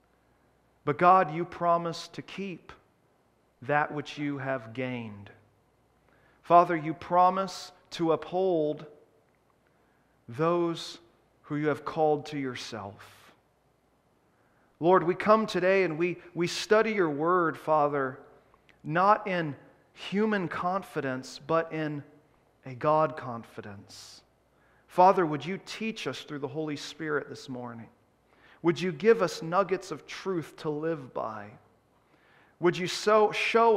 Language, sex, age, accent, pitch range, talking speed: English, male, 40-59, American, 130-175 Hz, 120 wpm